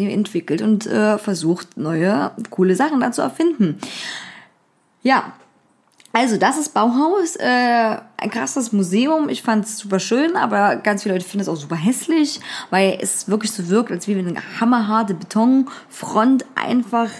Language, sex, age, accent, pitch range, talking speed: German, female, 20-39, German, 195-250 Hz, 155 wpm